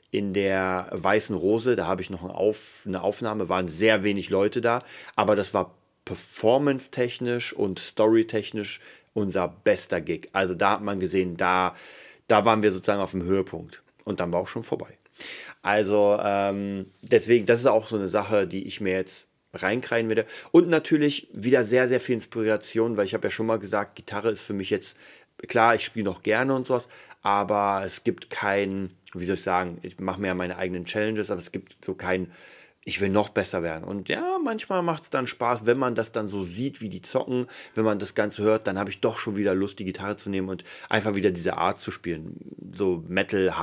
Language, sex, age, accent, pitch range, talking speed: German, male, 30-49, German, 95-110 Hz, 205 wpm